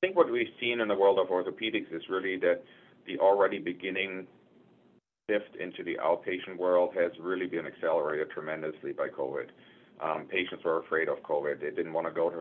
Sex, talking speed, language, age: male, 195 wpm, English, 30-49